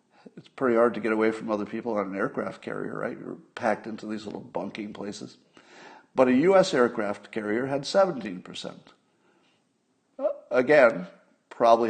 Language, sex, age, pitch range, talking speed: English, male, 50-69, 105-140 Hz, 150 wpm